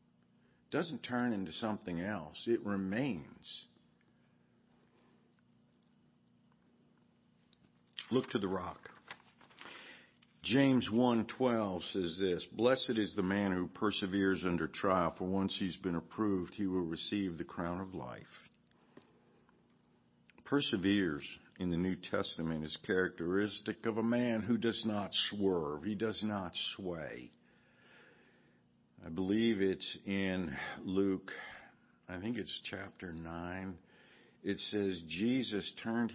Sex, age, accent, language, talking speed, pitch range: male, 60-79, American, English, 115 wpm, 85-110 Hz